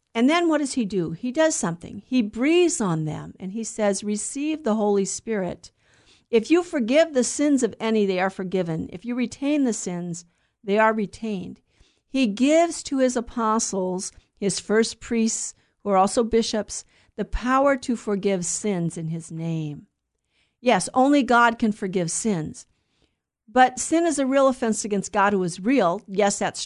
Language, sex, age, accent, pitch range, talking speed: English, female, 50-69, American, 205-270 Hz, 175 wpm